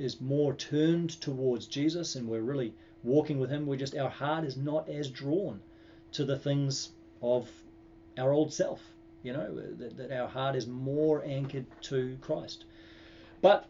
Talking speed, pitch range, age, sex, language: 165 wpm, 115-145 Hz, 30-49, male, English